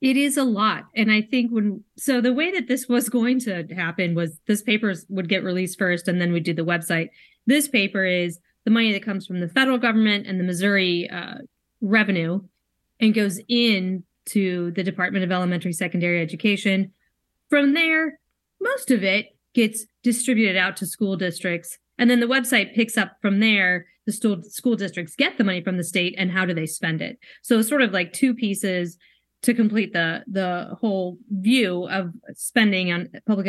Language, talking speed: English, 195 wpm